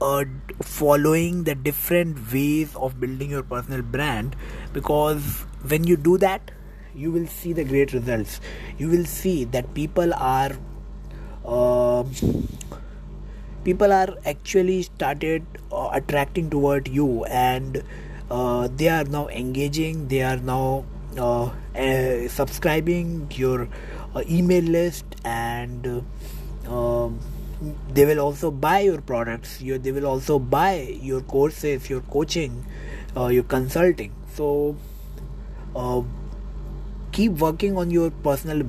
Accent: Indian